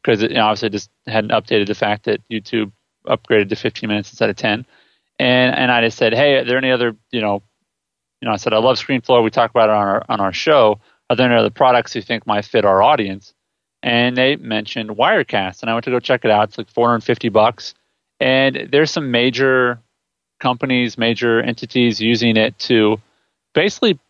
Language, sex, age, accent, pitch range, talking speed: English, male, 30-49, American, 105-125 Hz, 210 wpm